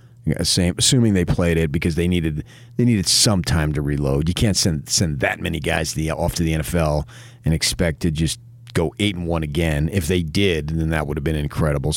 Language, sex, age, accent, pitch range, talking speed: English, male, 40-59, American, 85-115 Hz, 225 wpm